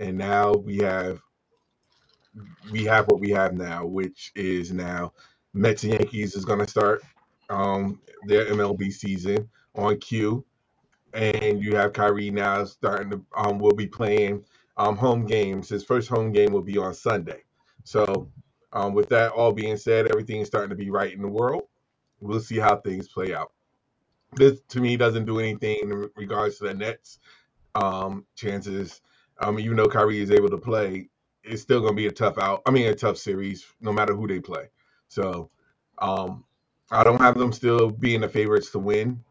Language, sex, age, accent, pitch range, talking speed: English, male, 30-49, American, 100-115 Hz, 185 wpm